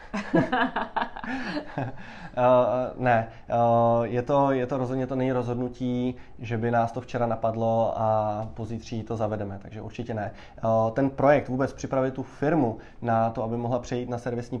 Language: Czech